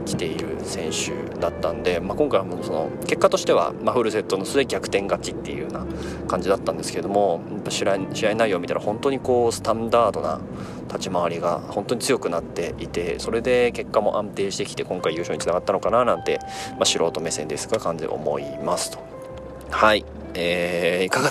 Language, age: Japanese, 20-39